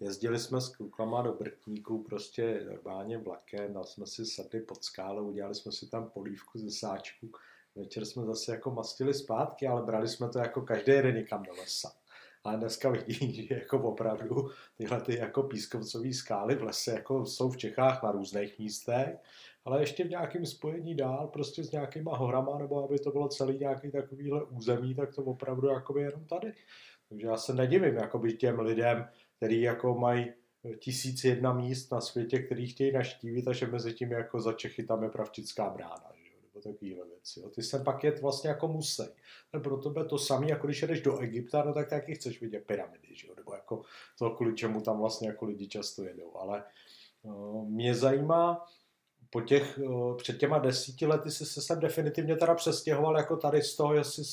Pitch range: 115-145 Hz